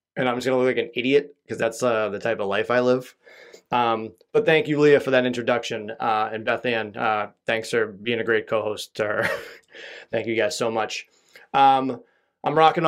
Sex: male